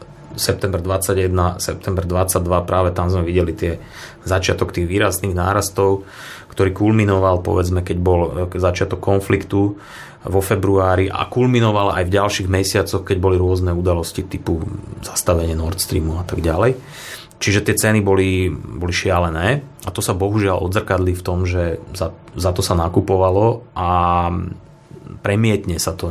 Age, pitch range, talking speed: 30-49, 90-100 Hz, 145 wpm